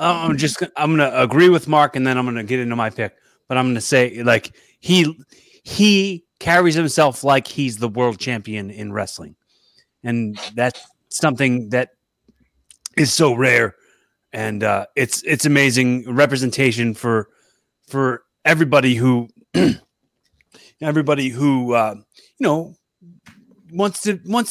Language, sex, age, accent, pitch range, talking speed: English, male, 30-49, American, 125-175 Hz, 145 wpm